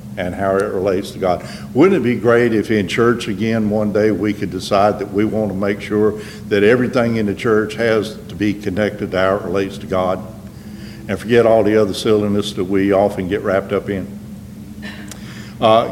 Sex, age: male, 60-79